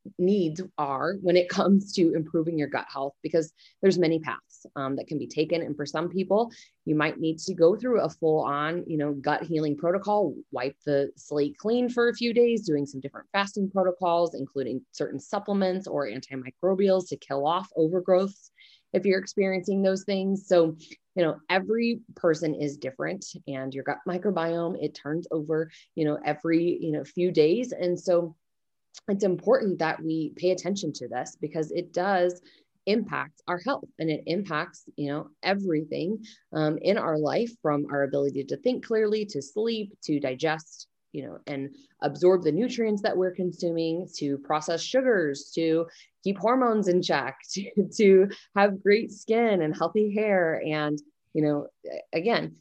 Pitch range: 150-195 Hz